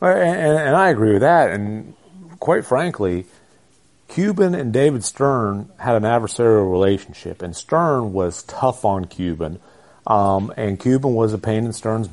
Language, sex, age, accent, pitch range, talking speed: English, male, 40-59, American, 105-130 Hz, 155 wpm